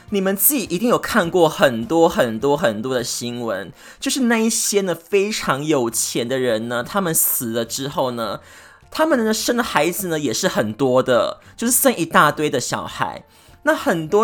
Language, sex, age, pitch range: Chinese, male, 20-39, 140-205 Hz